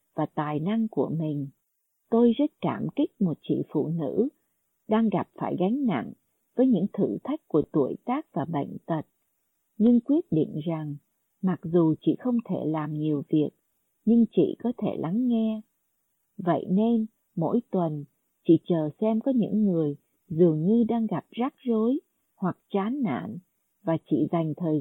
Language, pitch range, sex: Vietnamese, 160-235 Hz, female